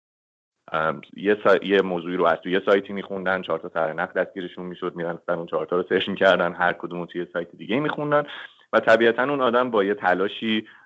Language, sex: Persian, male